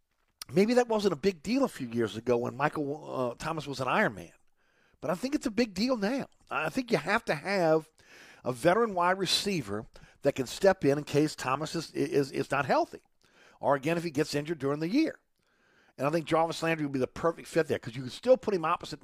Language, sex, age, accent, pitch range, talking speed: English, male, 50-69, American, 135-180 Hz, 235 wpm